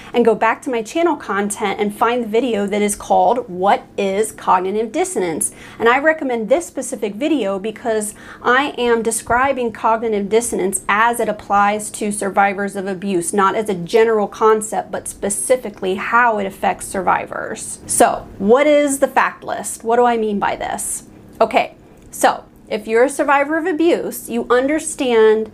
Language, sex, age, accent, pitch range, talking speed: English, female, 30-49, American, 215-290 Hz, 165 wpm